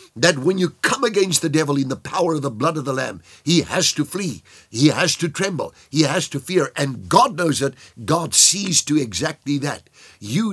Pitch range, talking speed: 130-175 Hz, 215 wpm